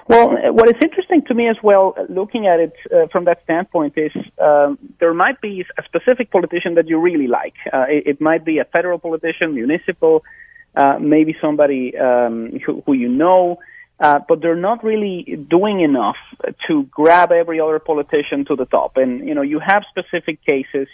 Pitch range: 145-200 Hz